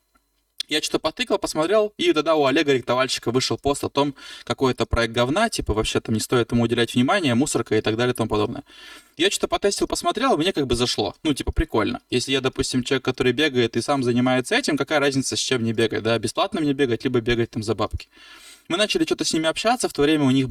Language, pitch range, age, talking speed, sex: Russian, 120-155 Hz, 20-39, 230 wpm, male